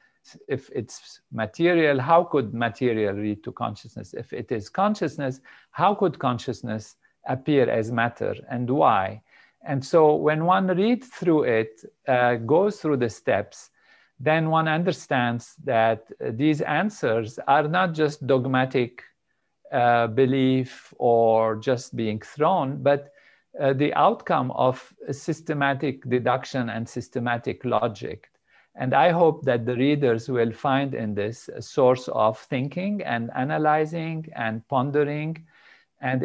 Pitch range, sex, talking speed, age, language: 120-150 Hz, male, 130 wpm, 50-69, Hebrew